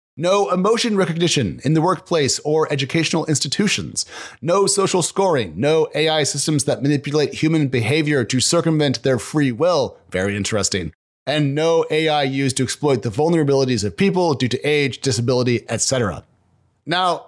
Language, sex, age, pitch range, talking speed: English, male, 30-49, 130-170 Hz, 145 wpm